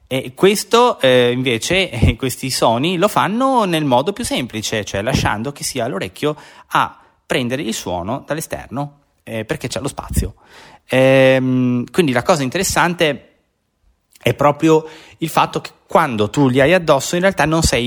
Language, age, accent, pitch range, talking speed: Italian, 30-49, native, 115-150 Hz, 150 wpm